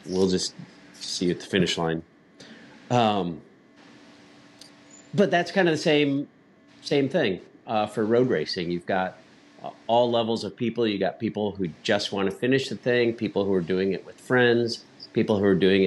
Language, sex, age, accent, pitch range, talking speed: English, male, 50-69, American, 95-120 Hz, 180 wpm